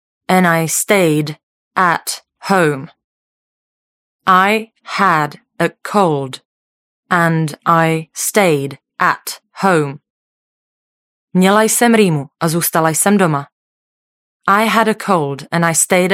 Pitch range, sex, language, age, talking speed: 150-195 Hz, female, Czech, 20-39, 105 wpm